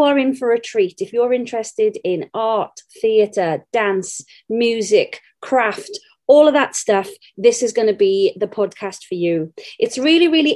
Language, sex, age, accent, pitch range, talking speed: English, female, 30-49, British, 210-295 Hz, 170 wpm